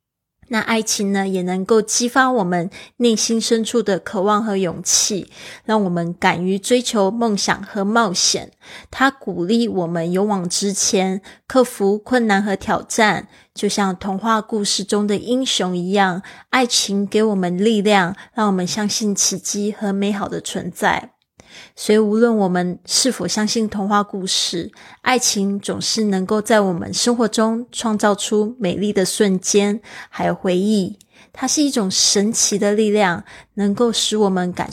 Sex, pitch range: female, 190-220 Hz